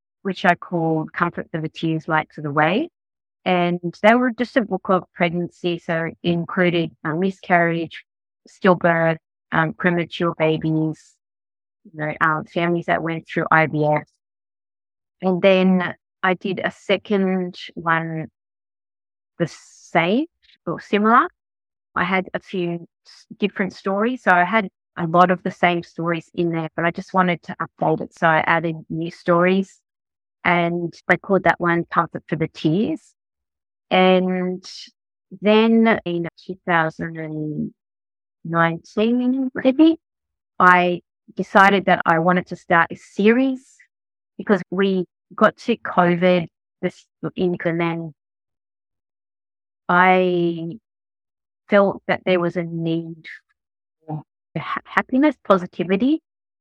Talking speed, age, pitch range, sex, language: 125 wpm, 20-39, 165-190 Hz, female, English